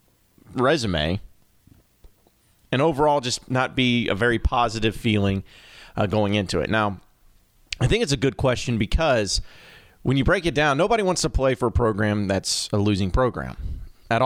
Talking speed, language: 165 wpm, English